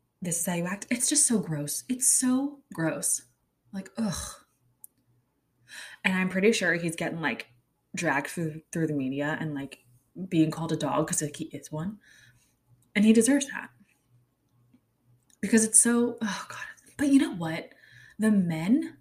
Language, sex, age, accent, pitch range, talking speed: English, female, 20-39, American, 150-220 Hz, 165 wpm